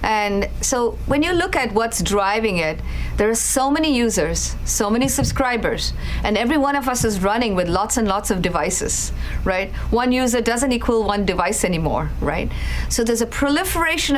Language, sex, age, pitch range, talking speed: English, female, 50-69, 190-260 Hz, 180 wpm